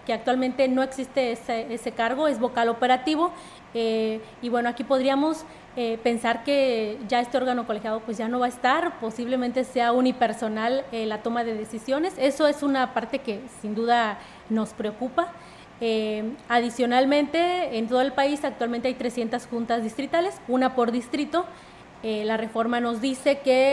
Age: 30-49